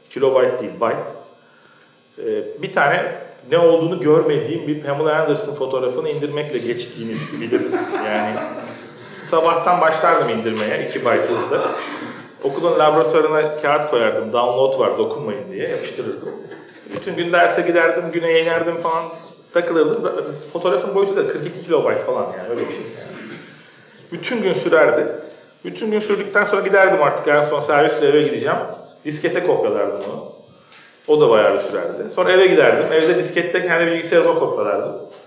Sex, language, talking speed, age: male, Turkish, 140 wpm, 40-59